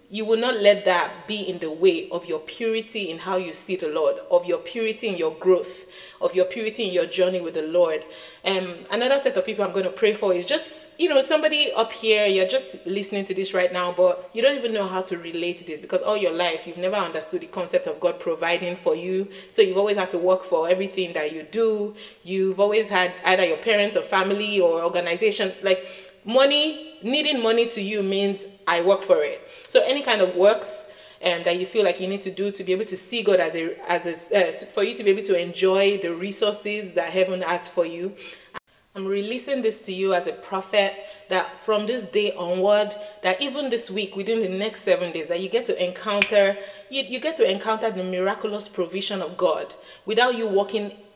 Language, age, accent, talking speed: English, 30-49, Nigerian, 225 wpm